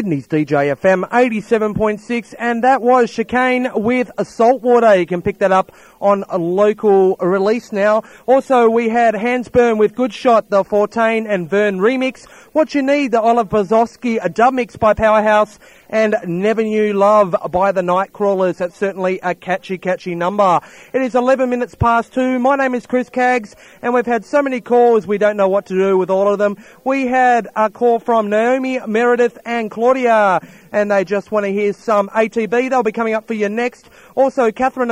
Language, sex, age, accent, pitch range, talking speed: English, male, 30-49, Australian, 195-240 Hz, 190 wpm